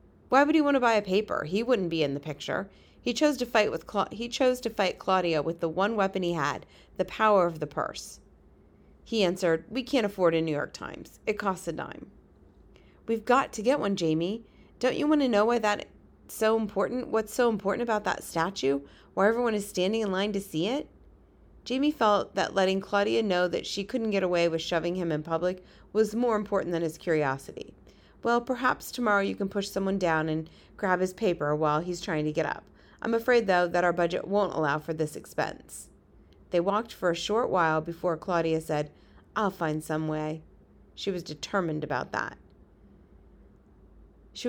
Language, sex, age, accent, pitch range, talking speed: English, female, 30-49, American, 160-220 Hz, 200 wpm